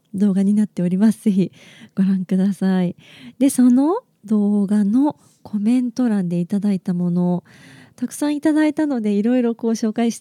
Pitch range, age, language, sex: 185-250 Hz, 20-39, Japanese, female